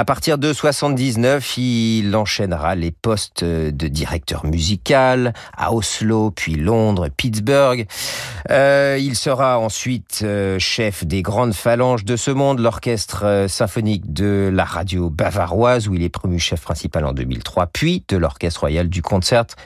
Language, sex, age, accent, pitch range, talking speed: French, male, 40-59, French, 85-120 Hz, 145 wpm